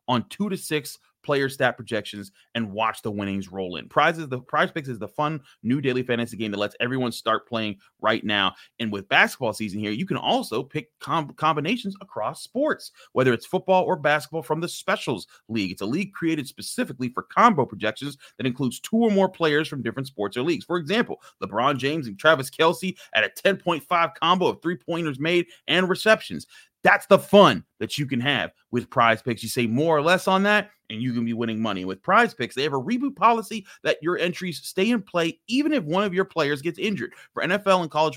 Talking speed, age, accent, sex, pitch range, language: 215 wpm, 30-49, American, male, 115-170 Hz, English